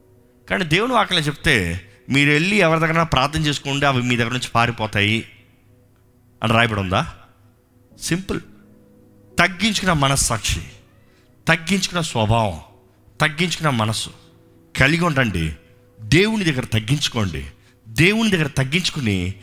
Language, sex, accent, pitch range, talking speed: Telugu, male, native, 110-165 Hz, 100 wpm